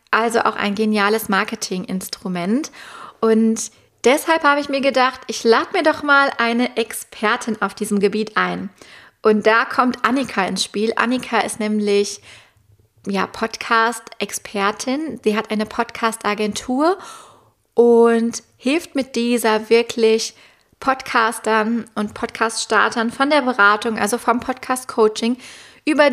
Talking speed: 120 wpm